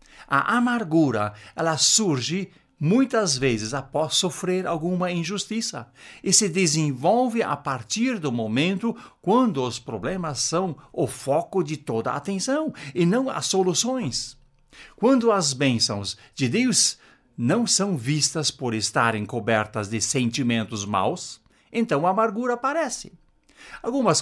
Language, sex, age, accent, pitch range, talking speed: Portuguese, male, 60-79, Brazilian, 130-200 Hz, 120 wpm